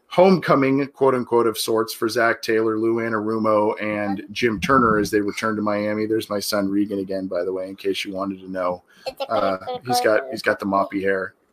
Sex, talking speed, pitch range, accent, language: male, 210 wpm, 120-170 Hz, American, English